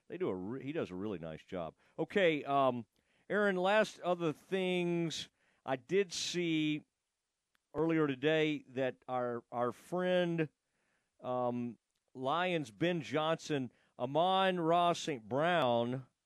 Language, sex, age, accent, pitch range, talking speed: English, male, 50-69, American, 125-170 Hz, 120 wpm